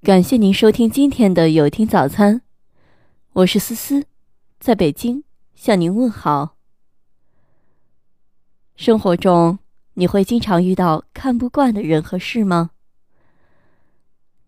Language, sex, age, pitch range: Chinese, female, 20-39, 165-235 Hz